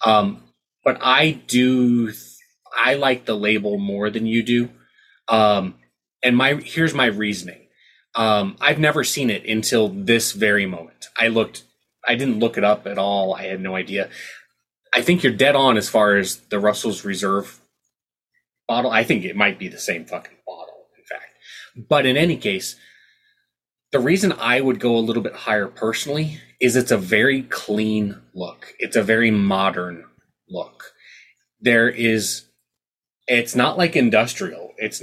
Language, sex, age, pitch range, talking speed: English, male, 20-39, 100-125 Hz, 165 wpm